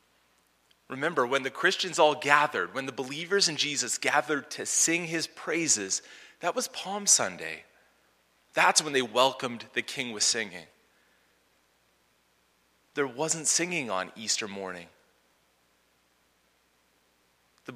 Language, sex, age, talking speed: English, male, 30-49, 120 wpm